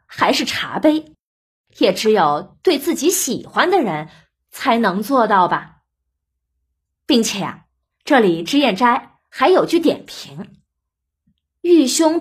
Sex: female